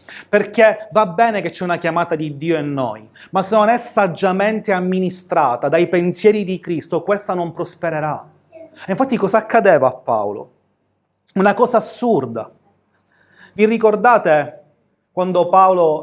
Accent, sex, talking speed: native, male, 140 wpm